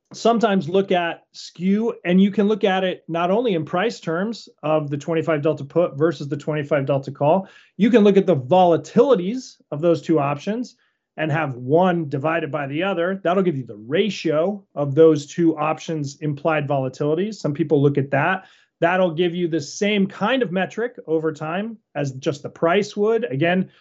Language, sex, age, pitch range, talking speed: English, male, 30-49, 160-205 Hz, 185 wpm